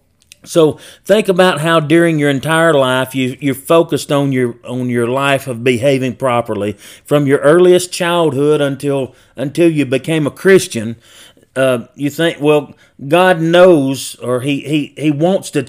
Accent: American